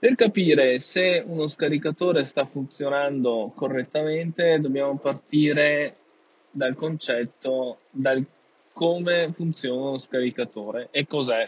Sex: male